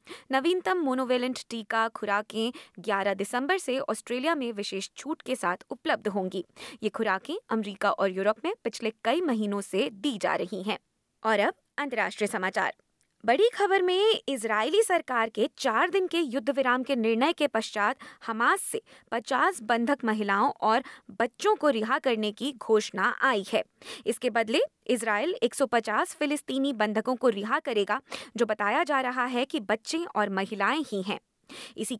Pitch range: 215-295 Hz